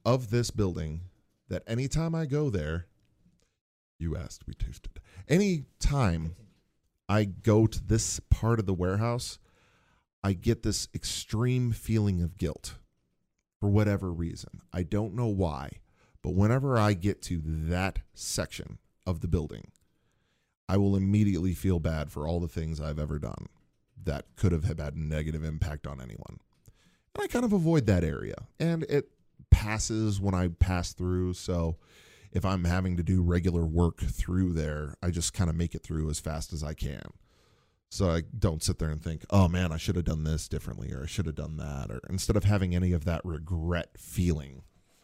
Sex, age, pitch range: male, 40-59, 85-110 Hz